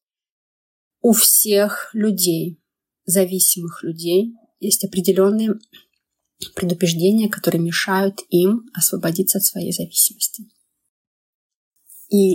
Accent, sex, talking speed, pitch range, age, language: native, female, 80 wpm, 180-210 Hz, 20-39, Russian